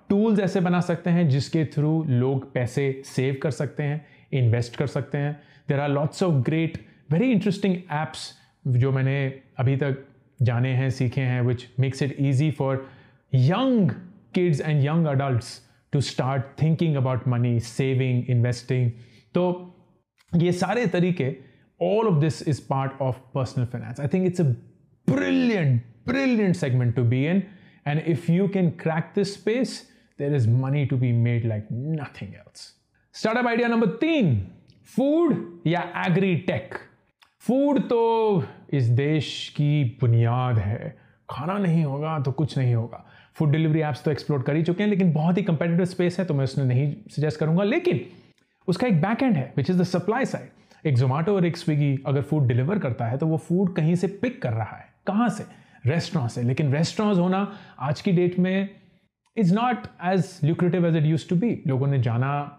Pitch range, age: 135-180 Hz, 30-49